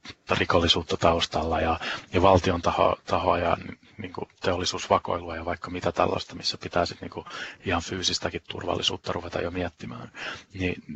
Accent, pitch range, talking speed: native, 85-95 Hz, 150 wpm